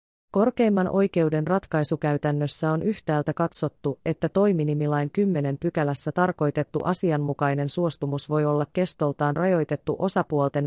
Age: 30-49